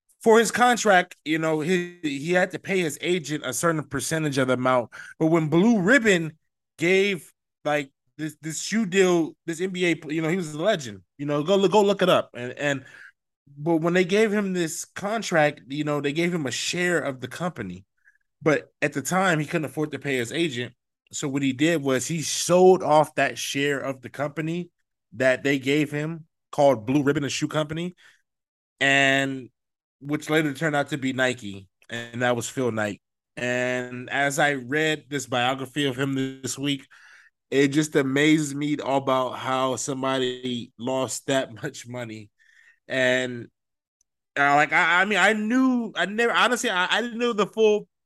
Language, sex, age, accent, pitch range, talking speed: English, male, 20-39, American, 130-170 Hz, 185 wpm